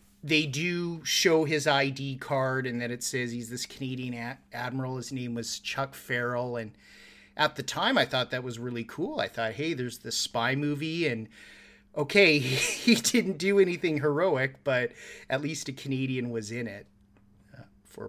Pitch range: 125-155 Hz